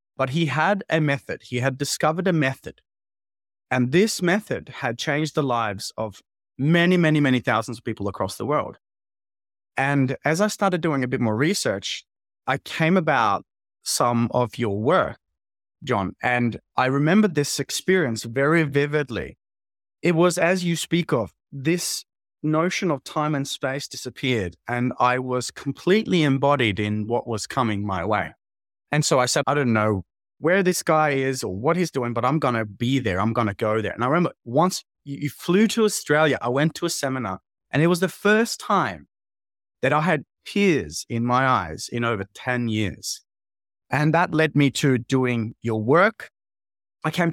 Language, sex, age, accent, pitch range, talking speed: English, male, 20-39, Australian, 115-155 Hz, 180 wpm